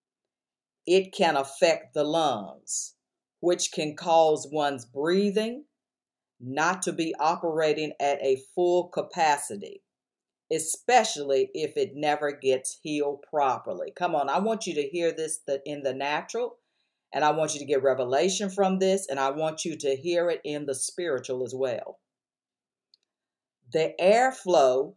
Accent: American